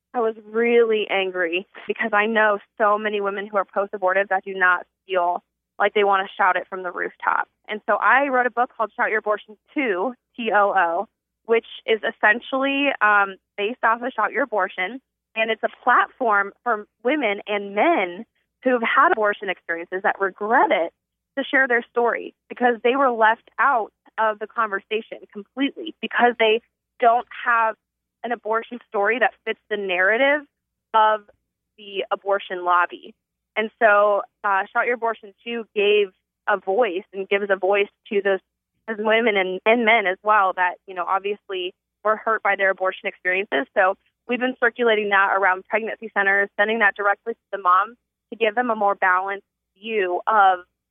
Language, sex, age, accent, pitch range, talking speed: English, female, 20-39, American, 195-225 Hz, 175 wpm